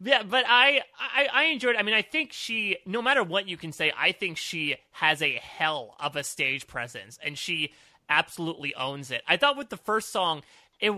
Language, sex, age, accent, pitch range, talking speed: English, male, 30-49, American, 140-190 Hz, 220 wpm